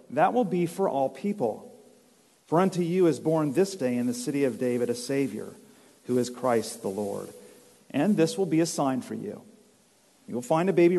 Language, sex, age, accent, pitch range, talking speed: English, male, 40-59, American, 130-195 Hz, 205 wpm